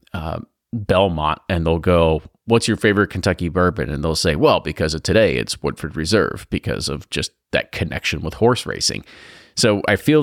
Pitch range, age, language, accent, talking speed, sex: 90-110 Hz, 30-49, English, American, 180 wpm, male